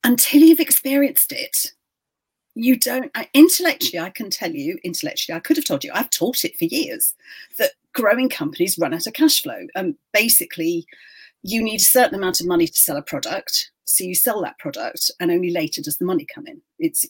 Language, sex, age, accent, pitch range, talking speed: English, female, 40-59, British, 180-300 Hz, 200 wpm